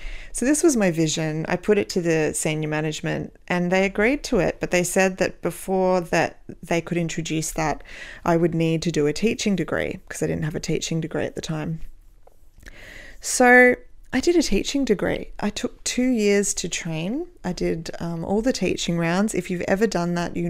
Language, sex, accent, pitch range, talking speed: English, female, Australian, 160-195 Hz, 205 wpm